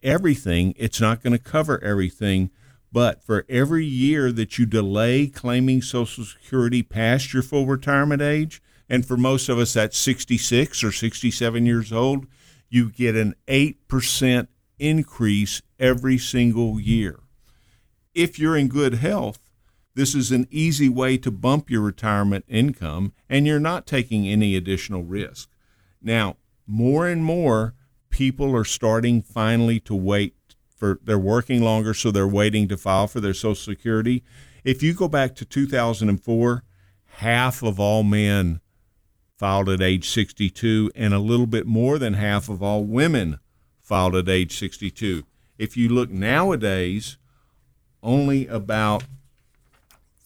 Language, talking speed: English, 145 wpm